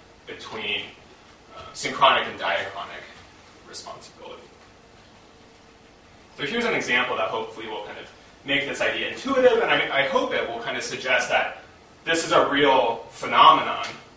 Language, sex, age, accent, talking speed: English, male, 30-49, American, 145 wpm